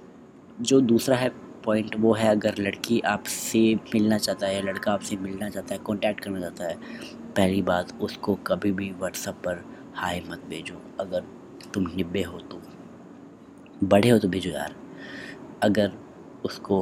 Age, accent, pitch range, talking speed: 20-39, native, 95-110 Hz, 155 wpm